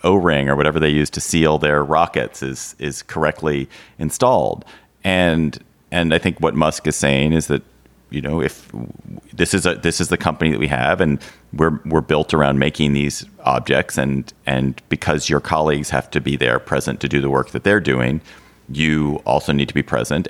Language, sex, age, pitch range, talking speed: English, male, 40-59, 70-80 Hz, 200 wpm